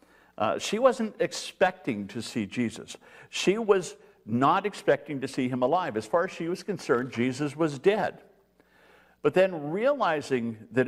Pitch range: 110-165 Hz